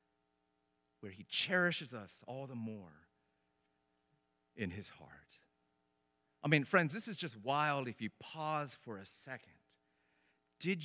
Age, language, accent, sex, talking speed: 40-59, English, American, male, 125 wpm